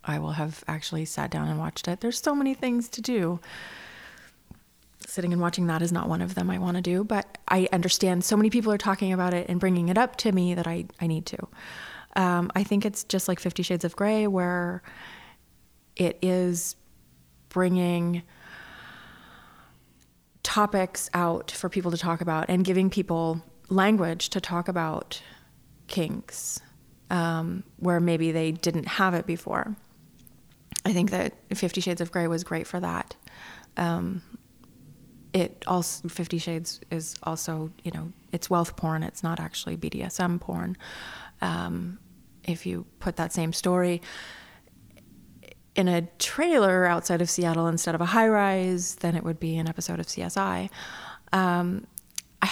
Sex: female